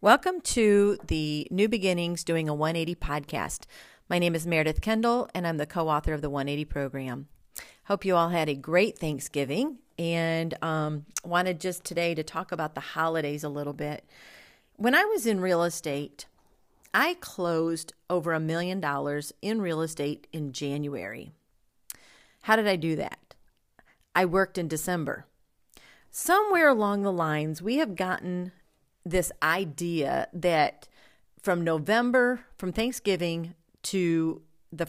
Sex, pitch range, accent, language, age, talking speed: female, 160-205 Hz, American, English, 40-59, 145 wpm